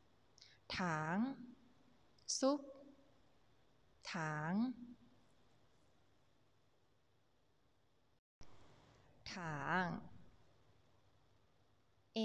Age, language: 20-39, Thai